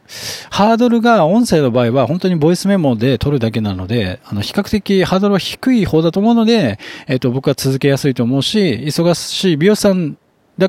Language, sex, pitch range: Japanese, male, 110-165 Hz